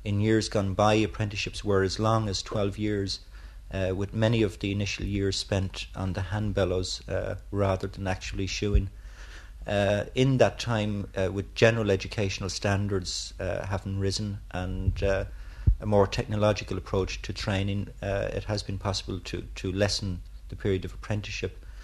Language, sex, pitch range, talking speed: English, male, 95-105 Hz, 160 wpm